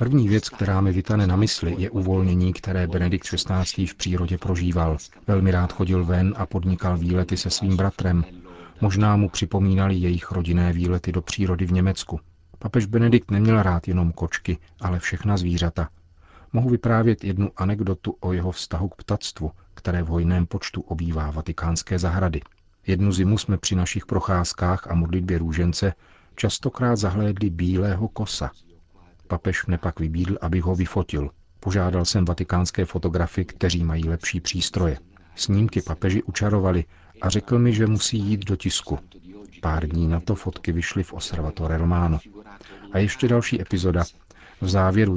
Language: Czech